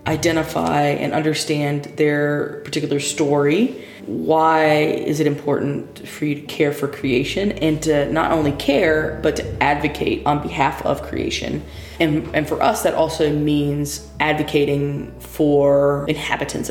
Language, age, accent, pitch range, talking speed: English, 20-39, American, 140-155 Hz, 135 wpm